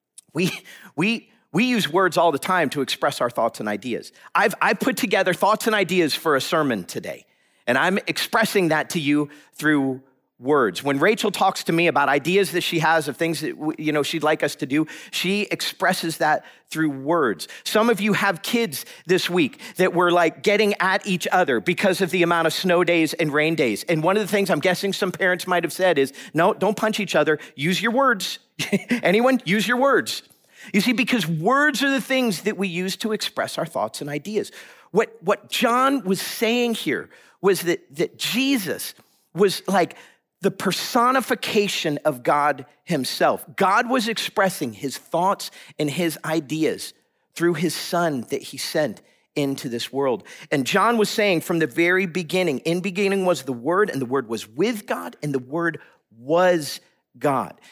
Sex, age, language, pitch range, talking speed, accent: male, 40-59, English, 155-205 Hz, 185 wpm, American